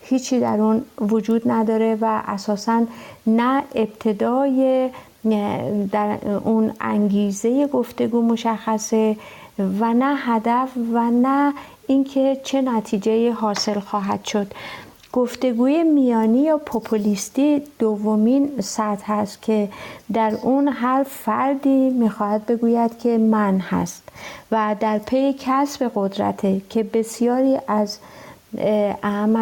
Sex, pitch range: female, 210-240 Hz